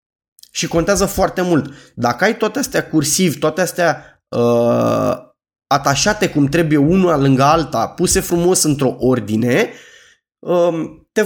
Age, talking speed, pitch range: 20-39, 115 wpm, 135-180 Hz